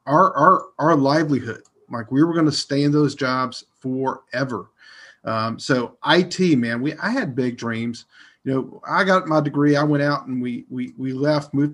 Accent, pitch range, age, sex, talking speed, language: American, 120-150 Hz, 40-59, male, 195 wpm, English